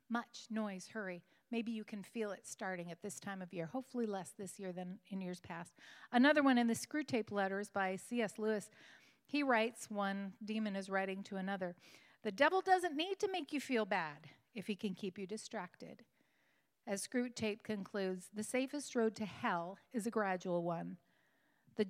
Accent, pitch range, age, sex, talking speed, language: American, 185-240 Hz, 40-59, female, 185 wpm, English